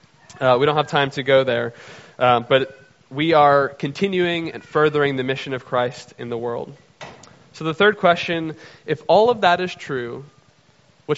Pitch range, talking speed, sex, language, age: 130-160 Hz, 175 wpm, male, English, 20-39